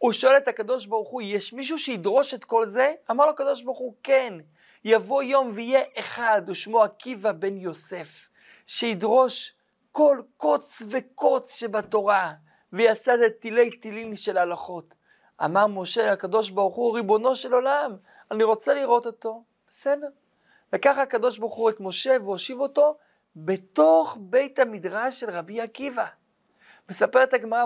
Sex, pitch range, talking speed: male, 195-260 Hz, 145 wpm